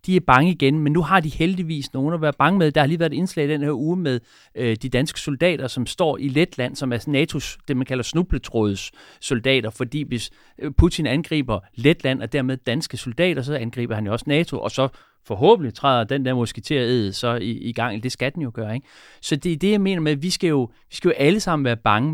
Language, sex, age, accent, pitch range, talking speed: Danish, male, 40-59, native, 115-150 Hz, 235 wpm